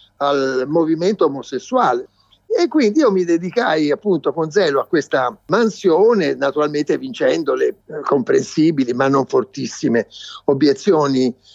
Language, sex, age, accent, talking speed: Italian, male, 50-69, native, 115 wpm